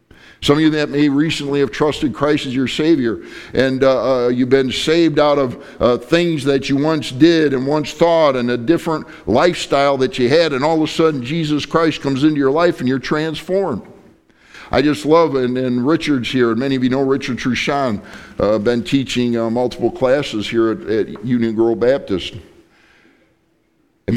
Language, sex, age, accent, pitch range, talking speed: English, male, 50-69, American, 130-170 Hz, 190 wpm